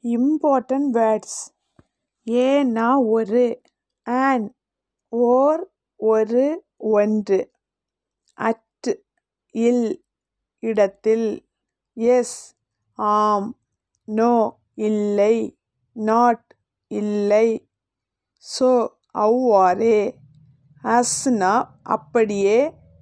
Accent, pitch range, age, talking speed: native, 205-245 Hz, 50-69, 60 wpm